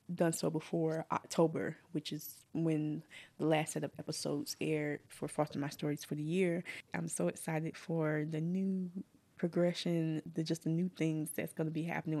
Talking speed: 180 wpm